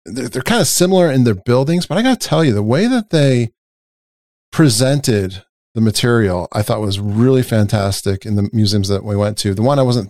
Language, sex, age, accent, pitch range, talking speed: English, male, 40-59, American, 95-120 Hz, 215 wpm